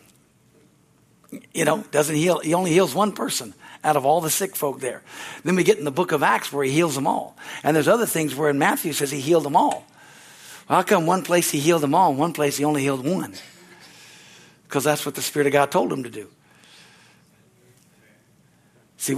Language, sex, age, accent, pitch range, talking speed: English, male, 60-79, American, 145-185 Hz, 220 wpm